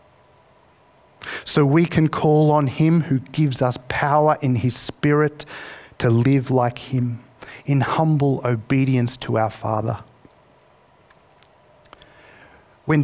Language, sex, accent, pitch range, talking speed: English, male, Australian, 115-145 Hz, 110 wpm